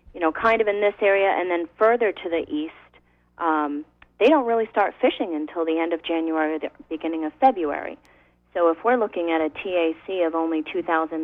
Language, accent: English, American